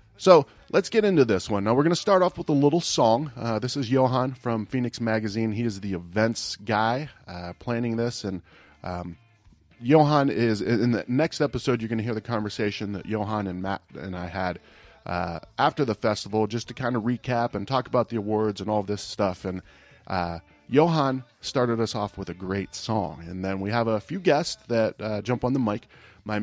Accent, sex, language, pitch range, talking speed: American, male, English, 100-125 Hz, 215 wpm